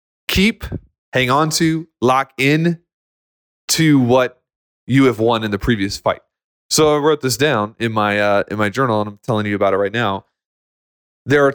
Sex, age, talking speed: male, 20-39, 185 wpm